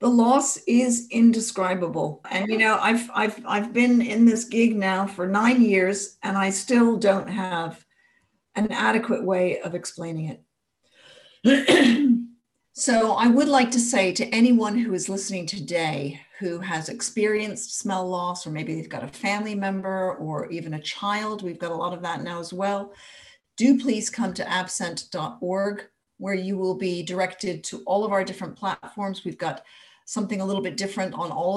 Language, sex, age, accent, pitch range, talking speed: English, female, 50-69, American, 170-215 Hz, 175 wpm